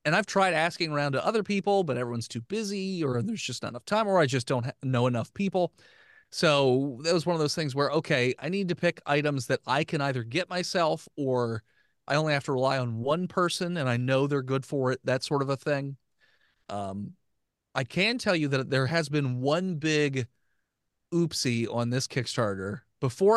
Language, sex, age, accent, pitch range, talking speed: English, male, 30-49, American, 120-155 Hz, 210 wpm